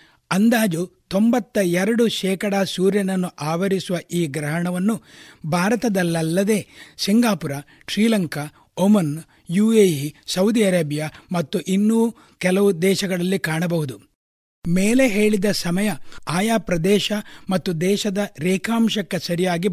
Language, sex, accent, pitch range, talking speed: Kannada, male, native, 170-215 Hz, 90 wpm